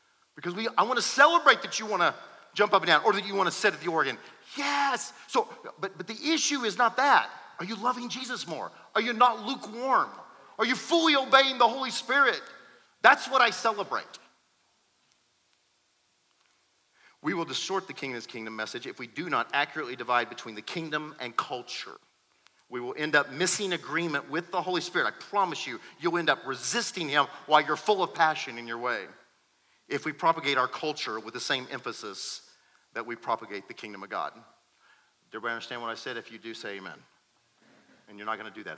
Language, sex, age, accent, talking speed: English, male, 40-59, American, 200 wpm